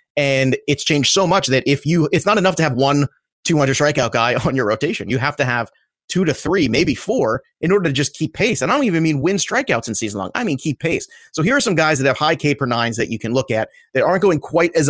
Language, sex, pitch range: English, male, 120-155 Hz